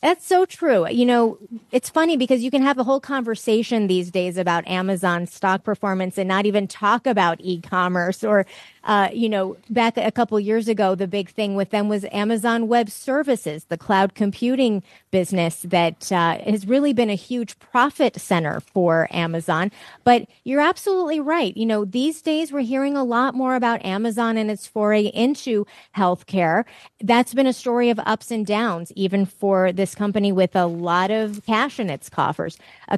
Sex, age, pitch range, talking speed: female, 30-49, 185-240 Hz, 180 wpm